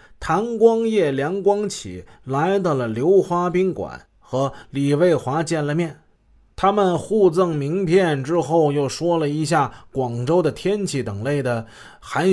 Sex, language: male, Chinese